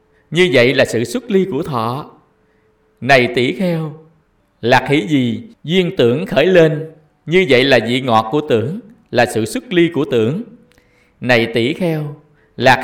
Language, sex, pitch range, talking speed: Vietnamese, male, 120-170 Hz, 165 wpm